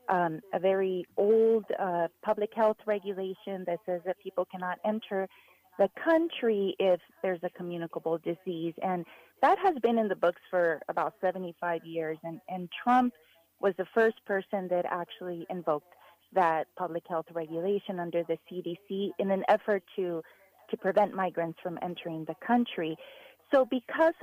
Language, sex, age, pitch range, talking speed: English, female, 30-49, 180-220 Hz, 155 wpm